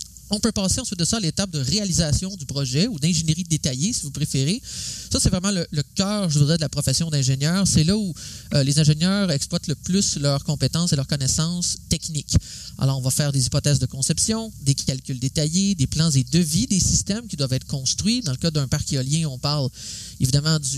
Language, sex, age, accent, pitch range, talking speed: French, male, 30-49, Canadian, 135-170 Hz, 220 wpm